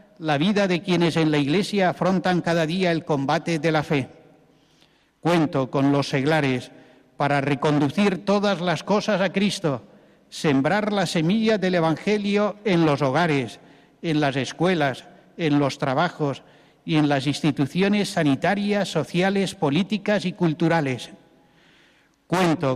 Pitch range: 145-190 Hz